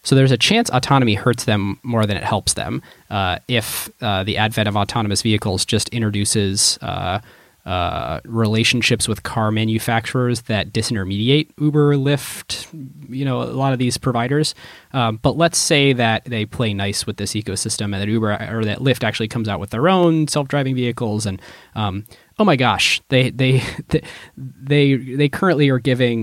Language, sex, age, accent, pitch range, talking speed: English, male, 20-39, American, 105-130 Hz, 175 wpm